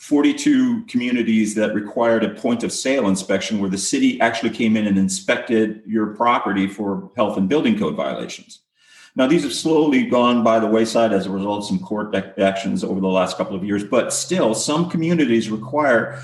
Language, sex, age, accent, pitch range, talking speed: English, male, 40-59, American, 110-170 Hz, 190 wpm